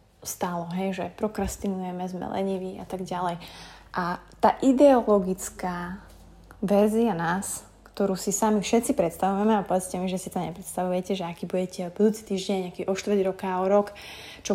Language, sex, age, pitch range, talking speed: Slovak, female, 20-39, 190-230 Hz, 155 wpm